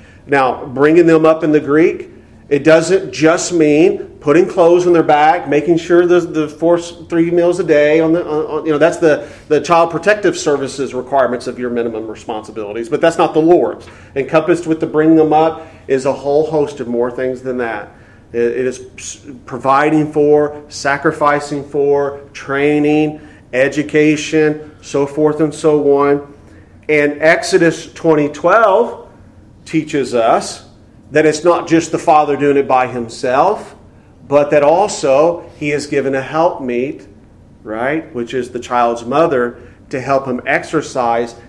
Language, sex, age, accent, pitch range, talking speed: English, male, 40-59, American, 125-160 Hz, 155 wpm